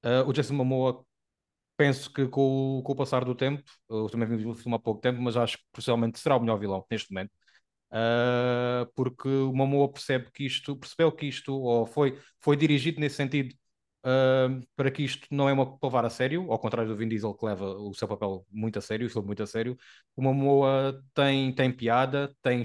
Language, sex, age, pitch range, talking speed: Portuguese, male, 20-39, 120-145 Hz, 215 wpm